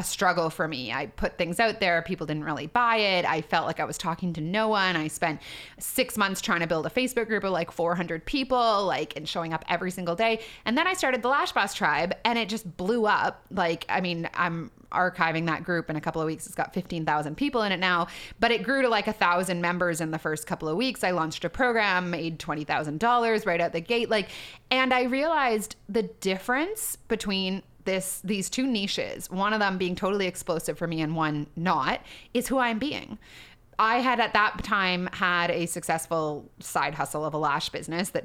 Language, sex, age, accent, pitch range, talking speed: English, female, 30-49, American, 165-220 Hz, 220 wpm